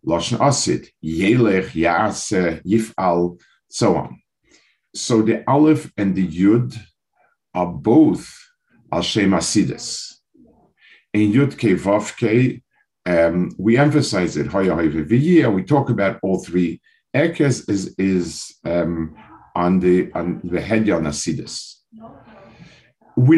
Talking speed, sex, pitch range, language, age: 110 wpm, male, 85-115 Hz, English, 50-69